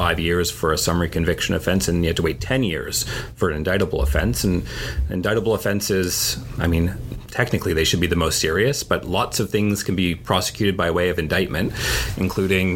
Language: English